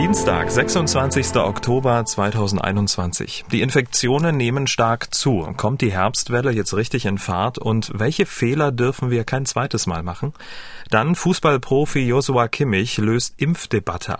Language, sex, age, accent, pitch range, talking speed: German, male, 40-59, German, 105-135 Hz, 130 wpm